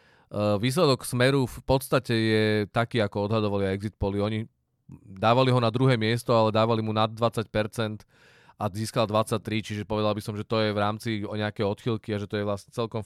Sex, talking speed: male, 185 wpm